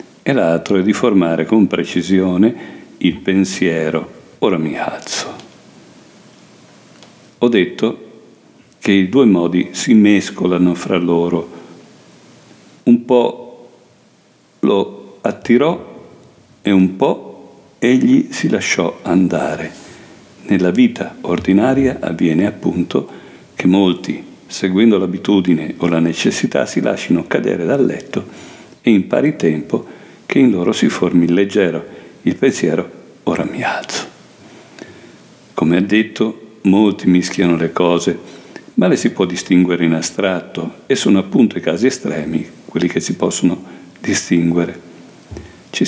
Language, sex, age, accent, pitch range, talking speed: Italian, male, 50-69, native, 85-115 Hz, 120 wpm